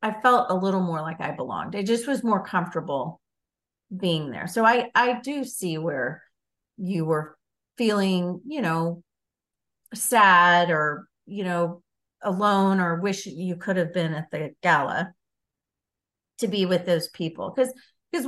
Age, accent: 40-59, American